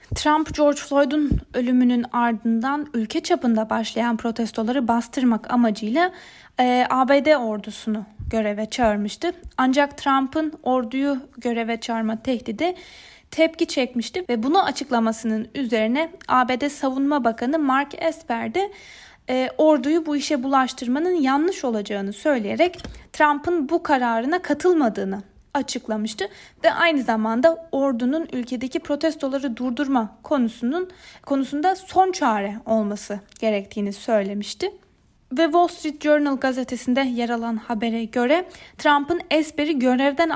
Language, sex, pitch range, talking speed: Turkish, female, 230-305 Hz, 110 wpm